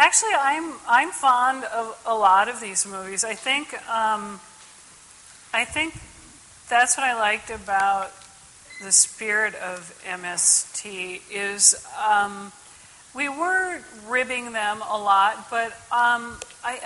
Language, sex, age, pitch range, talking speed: English, female, 40-59, 210-255 Hz, 125 wpm